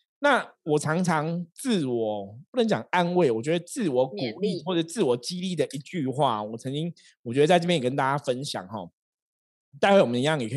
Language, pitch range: Chinese, 125-165 Hz